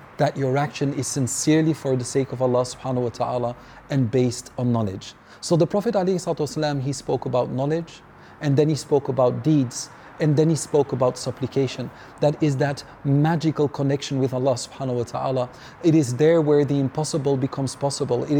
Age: 40-59